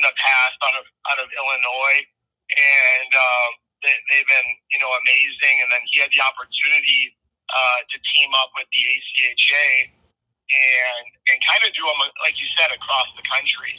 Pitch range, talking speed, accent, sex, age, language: 125-150 Hz, 175 wpm, American, male, 30-49, English